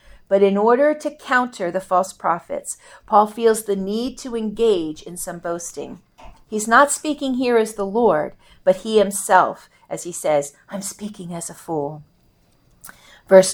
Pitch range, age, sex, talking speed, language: 180-250 Hz, 50-69, female, 160 wpm, English